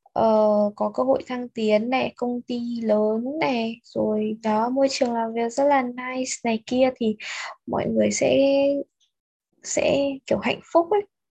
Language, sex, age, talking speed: Vietnamese, female, 10-29, 165 wpm